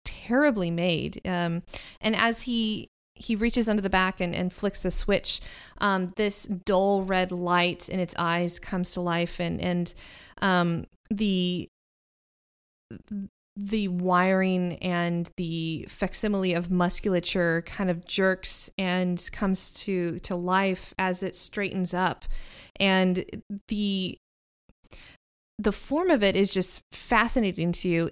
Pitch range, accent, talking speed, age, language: 180-215 Hz, American, 130 wpm, 20-39, English